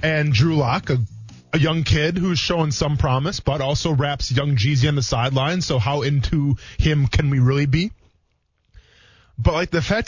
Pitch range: 120-170 Hz